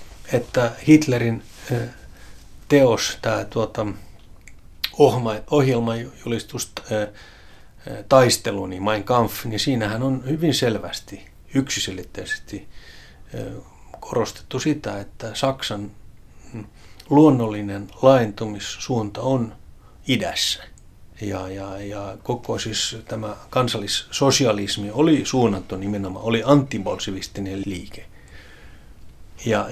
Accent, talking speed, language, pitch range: native, 75 wpm, Finnish, 100-120 Hz